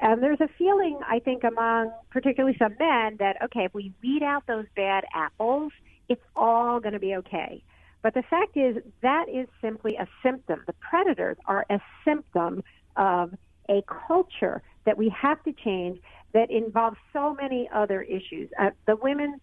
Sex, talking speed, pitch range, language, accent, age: female, 175 wpm, 200-265 Hz, English, American, 50-69